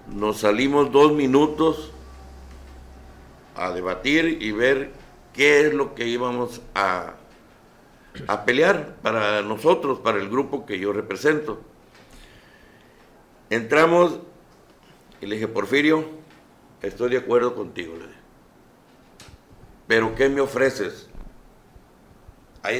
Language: Spanish